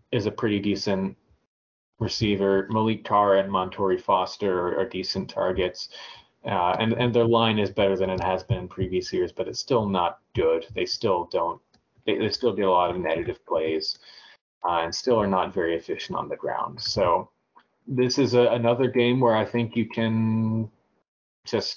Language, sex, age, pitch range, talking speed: English, male, 30-49, 95-115 Hz, 185 wpm